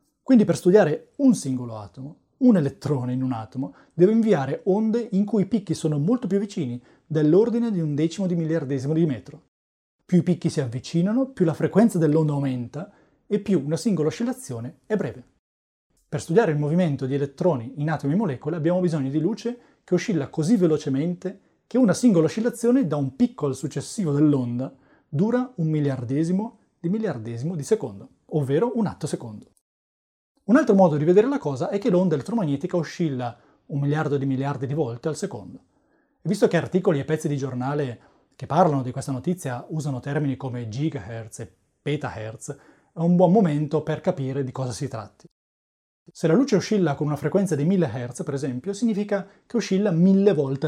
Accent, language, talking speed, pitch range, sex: native, Italian, 180 wpm, 140-190 Hz, male